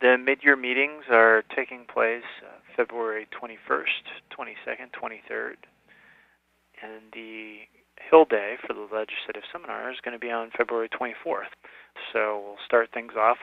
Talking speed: 135 wpm